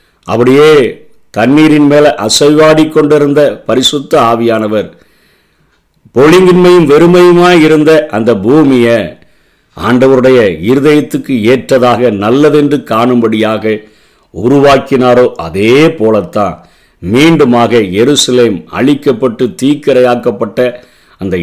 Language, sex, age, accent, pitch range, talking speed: Tamil, male, 50-69, native, 110-135 Hz, 65 wpm